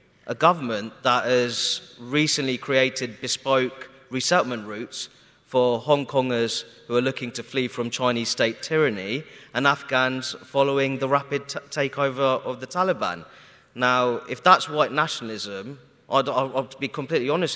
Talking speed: 145 wpm